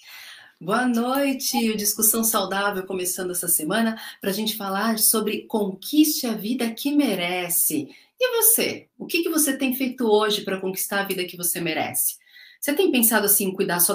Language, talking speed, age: Portuguese, 175 wpm, 40-59